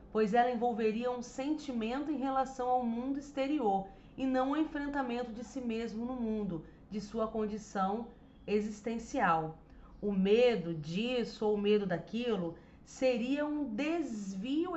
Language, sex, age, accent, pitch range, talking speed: Portuguese, female, 40-59, Brazilian, 205-265 Hz, 135 wpm